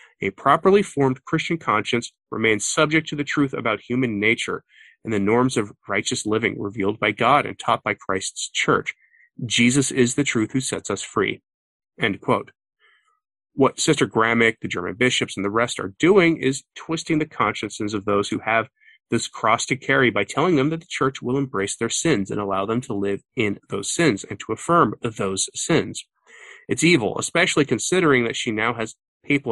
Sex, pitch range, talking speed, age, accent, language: male, 105-145 Hz, 185 wpm, 30-49, American, English